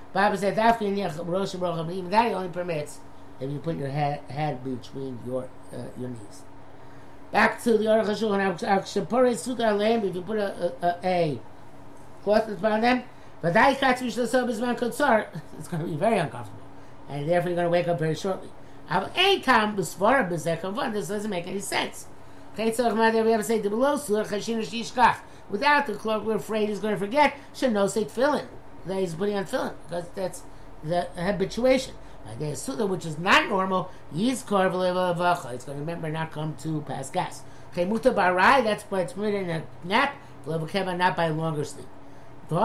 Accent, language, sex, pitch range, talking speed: American, English, male, 160-230 Hz, 150 wpm